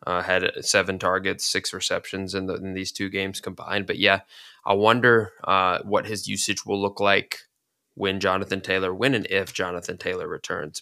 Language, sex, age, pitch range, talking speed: English, male, 20-39, 95-105 Hz, 175 wpm